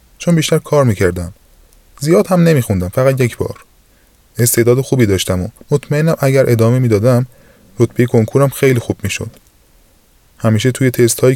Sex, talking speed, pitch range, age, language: male, 135 wpm, 100-130 Hz, 20-39, Persian